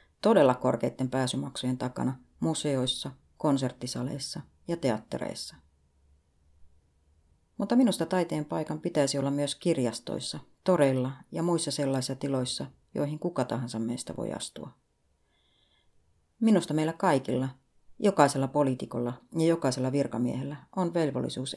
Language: Finnish